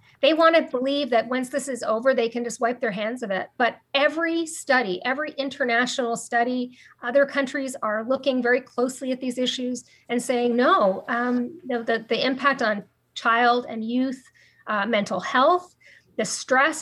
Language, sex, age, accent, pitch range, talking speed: English, female, 40-59, American, 235-285 Hz, 175 wpm